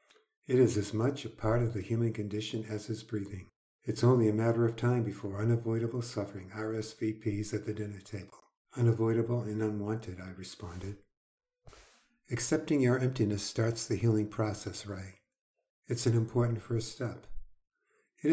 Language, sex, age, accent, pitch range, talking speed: English, male, 60-79, American, 105-115 Hz, 150 wpm